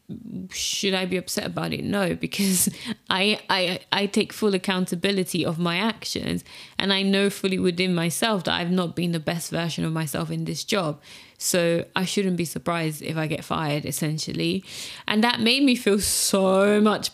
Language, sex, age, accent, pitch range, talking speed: English, female, 20-39, British, 180-235 Hz, 180 wpm